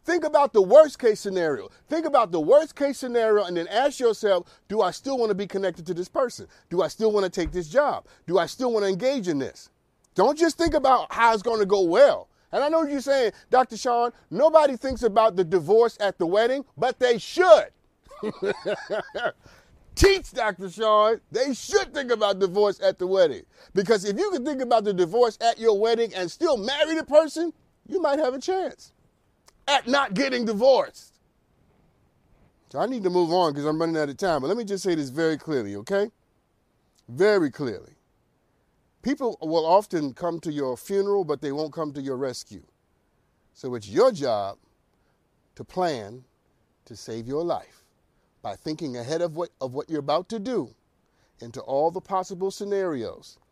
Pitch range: 160-255 Hz